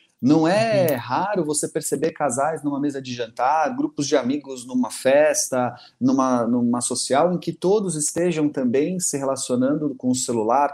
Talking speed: 155 wpm